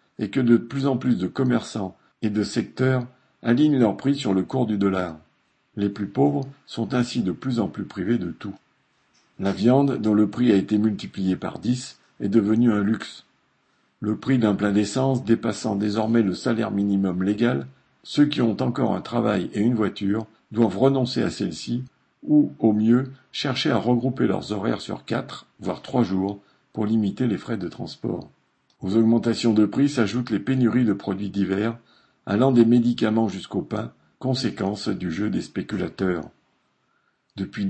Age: 50-69